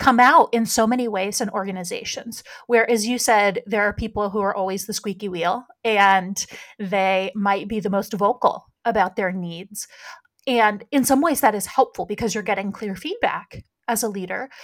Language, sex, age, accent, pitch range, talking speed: English, female, 30-49, American, 200-245 Hz, 185 wpm